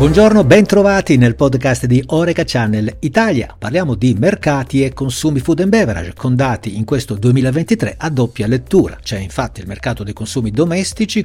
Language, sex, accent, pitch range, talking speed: Italian, male, native, 110-160 Hz, 170 wpm